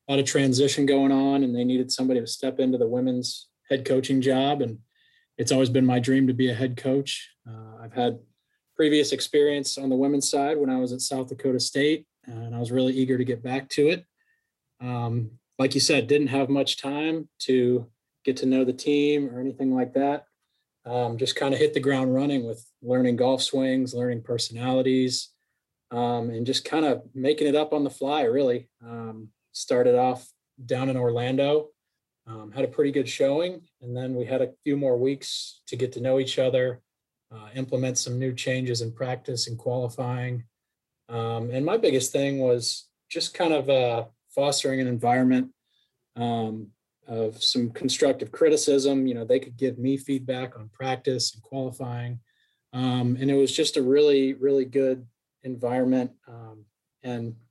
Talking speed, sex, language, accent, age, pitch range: 180 wpm, male, English, American, 20-39, 120-135 Hz